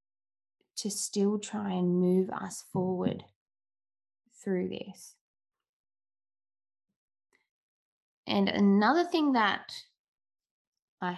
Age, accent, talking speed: 20-39, Australian, 75 wpm